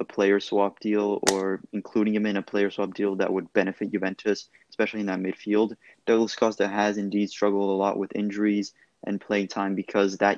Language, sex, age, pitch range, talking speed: English, male, 20-39, 95-105 Hz, 195 wpm